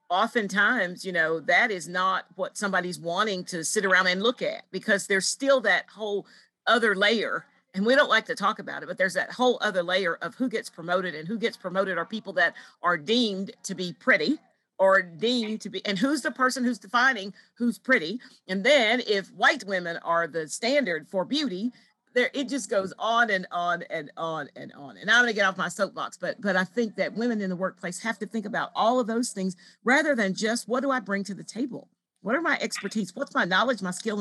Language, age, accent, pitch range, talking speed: English, 50-69, American, 185-230 Hz, 225 wpm